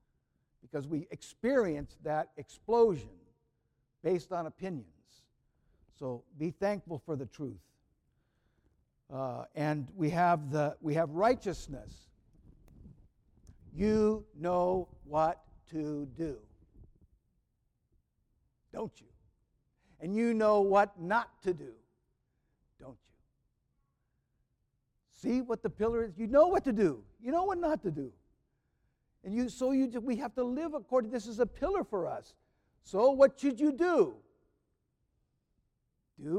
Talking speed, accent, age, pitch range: 120 wpm, American, 60-79, 145-235 Hz